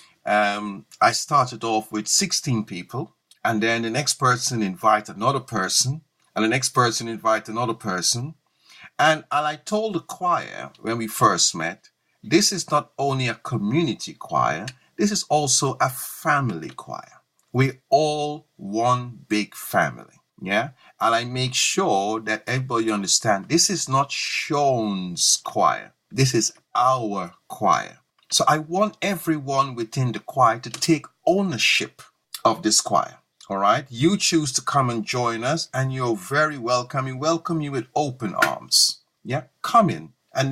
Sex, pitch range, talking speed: male, 115-155 Hz, 155 wpm